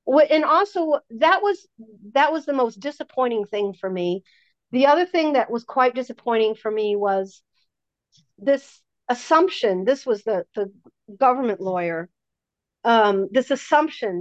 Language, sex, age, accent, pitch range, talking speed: English, female, 50-69, American, 205-270 Hz, 140 wpm